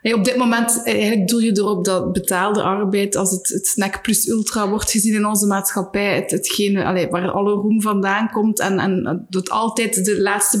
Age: 20-39